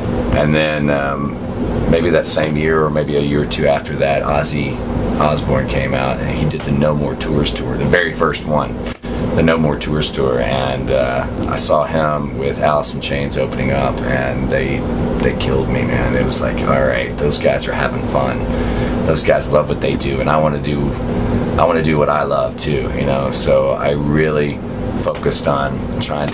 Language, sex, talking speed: English, male, 195 wpm